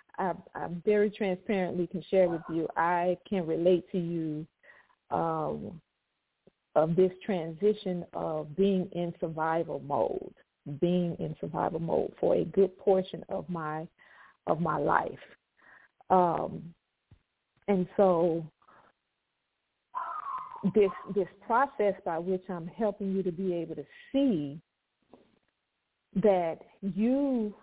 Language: English